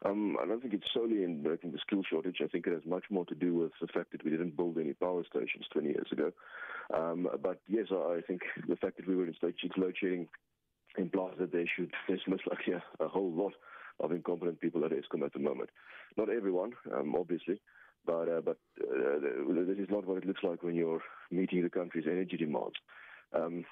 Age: 30-49